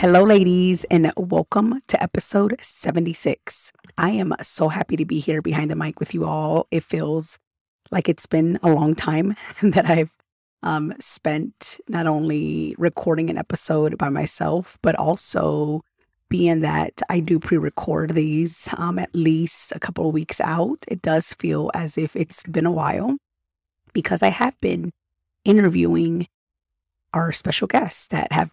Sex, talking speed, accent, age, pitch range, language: female, 155 wpm, American, 30-49, 155-175 Hz, English